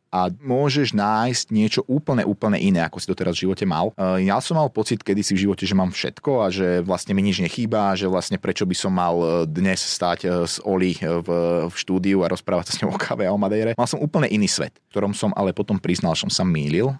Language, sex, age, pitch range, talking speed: Slovak, male, 30-49, 95-130 Hz, 235 wpm